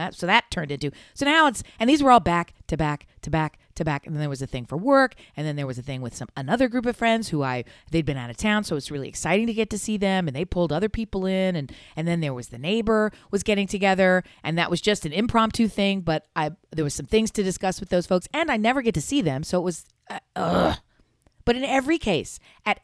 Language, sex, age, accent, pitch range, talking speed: English, female, 40-59, American, 155-225 Hz, 275 wpm